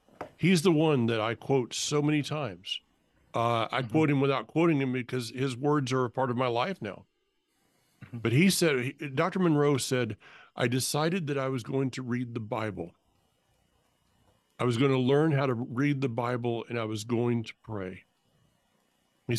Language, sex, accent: English, male, American